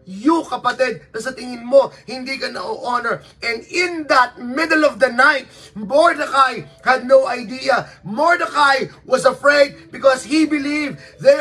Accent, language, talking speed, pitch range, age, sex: native, Filipino, 135 wpm, 250-305 Hz, 20-39, male